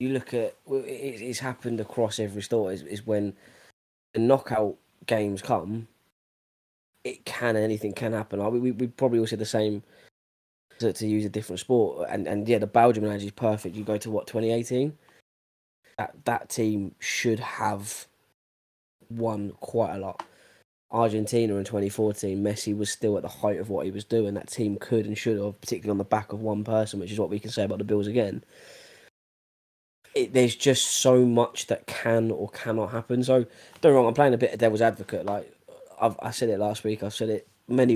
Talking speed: 200 wpm